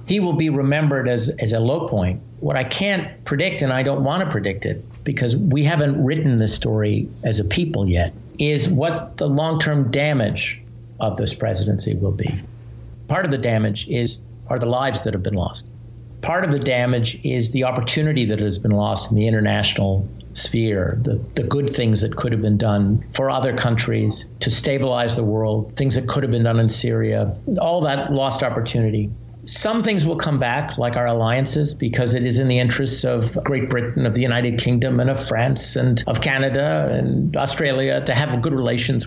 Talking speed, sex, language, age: 195 wpm, male, English, 50-69